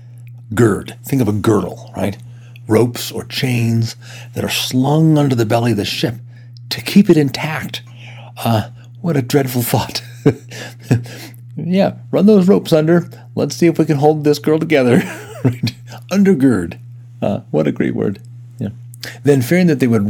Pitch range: 105-125 Hz